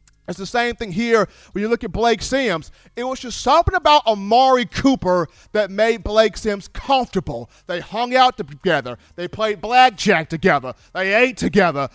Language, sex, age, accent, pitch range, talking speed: English, male, 40-59, American, 185-280 Hz, 170 wpm